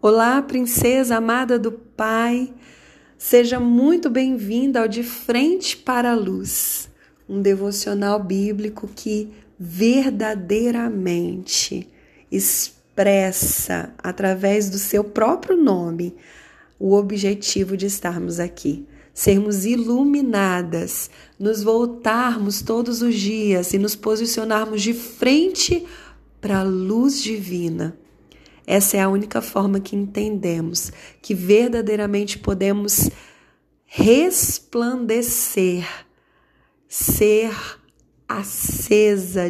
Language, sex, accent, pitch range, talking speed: Portuguese, female, Brazilian, 180-230 Hz, 90 wpm